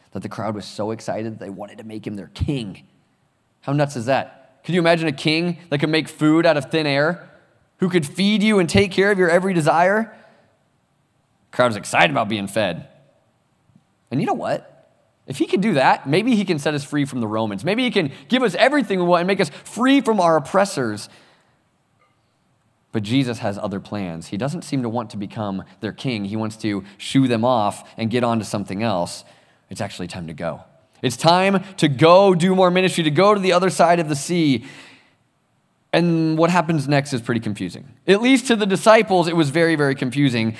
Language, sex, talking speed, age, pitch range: English, male, 215 wpm, 20-39, 115-175 Hz